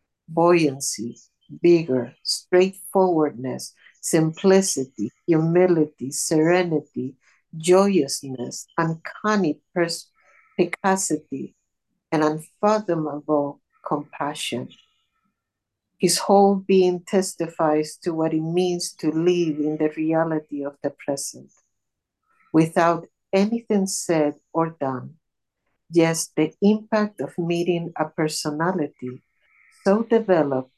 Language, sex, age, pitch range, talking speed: English, female, 60-79, 150-185 Hz, 80 wpm